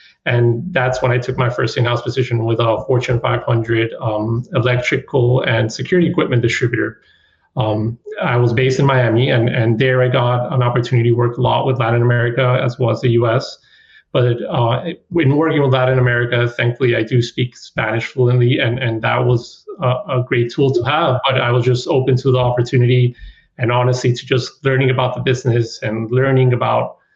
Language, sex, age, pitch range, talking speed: English, male, 30-49, 120-130 Hz, 190 wpm